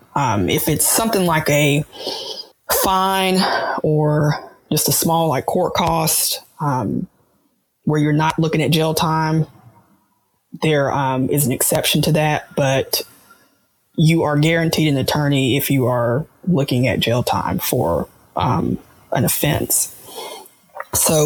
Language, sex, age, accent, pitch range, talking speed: English, female, 20-39, American, 145-165 Hz, 135 wpm